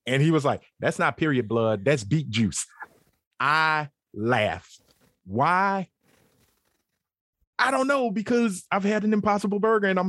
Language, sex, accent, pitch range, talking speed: English, male, American, 120-175 Hz, 150 wpm